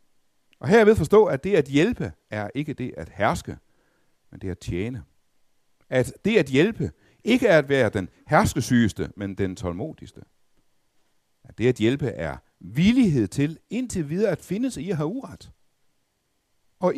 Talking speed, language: 170 wpm, Danish